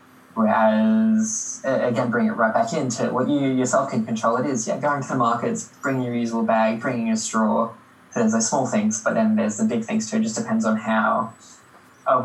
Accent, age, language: Australian, 10-29, English